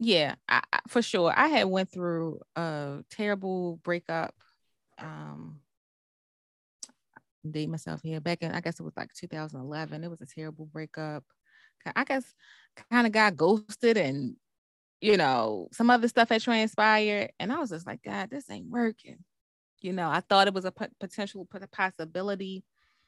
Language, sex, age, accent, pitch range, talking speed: English, female, 20-39, American, 165-220 Hz, 165 wpm